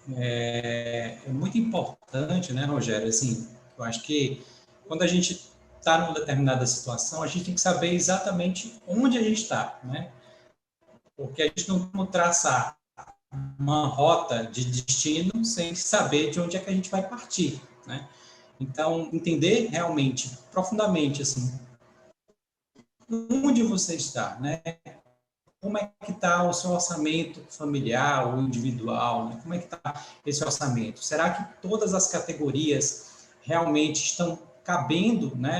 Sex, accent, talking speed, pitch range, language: male, Brazilian, 140 wpm, 130-175 Hz, Portuguese